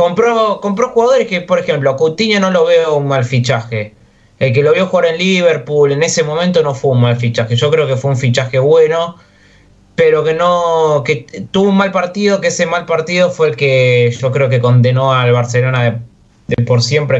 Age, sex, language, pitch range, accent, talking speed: 20-39, male, Spanish, 120-165 Hz, Argentinian, 215 wpm